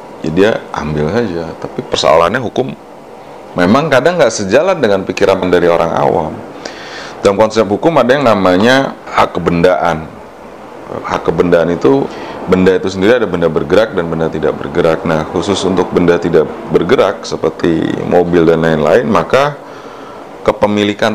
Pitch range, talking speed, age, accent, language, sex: 80-90 Hz, 140 wpm, 30-49, native, Indonesian, male